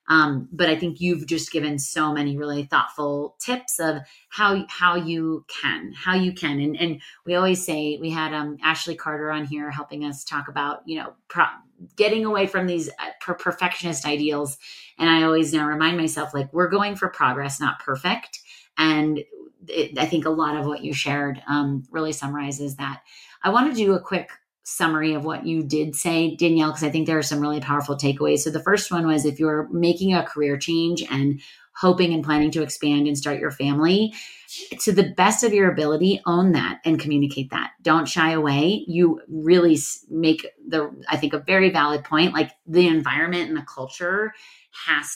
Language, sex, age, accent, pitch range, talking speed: English, female, 30-49, American, 150-175 Hz, 195 wpm